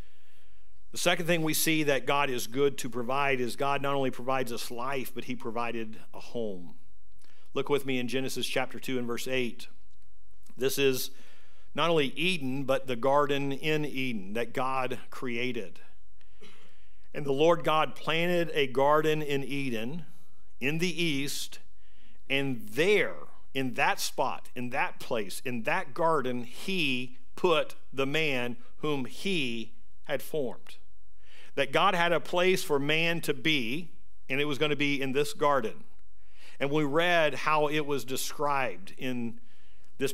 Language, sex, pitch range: English, male, 125-150 Hz